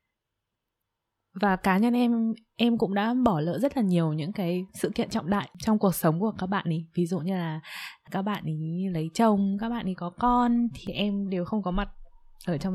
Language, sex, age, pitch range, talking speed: Vietnamese, female, 20-39, 175-240 Hz, 220 wpm